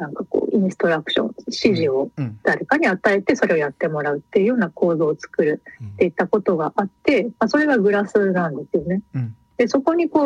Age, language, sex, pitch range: 40-59, Japanese, female, 175-255 Hz